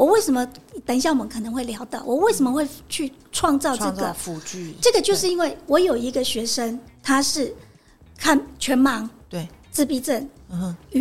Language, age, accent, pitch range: Chinese, 50-69, American, 250-335 Hz